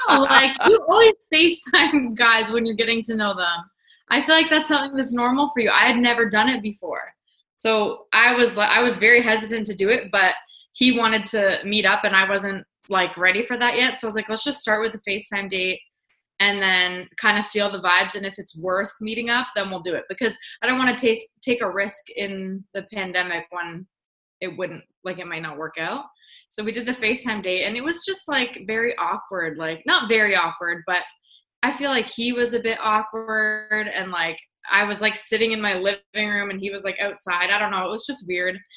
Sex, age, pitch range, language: female, 20-39, 190-240 Hz, English